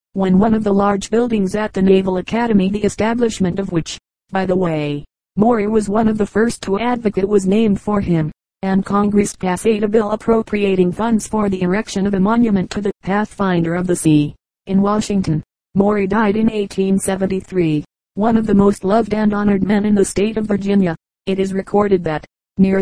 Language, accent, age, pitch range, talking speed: English, American, 40-59, 190-210 Hz, 190 wpm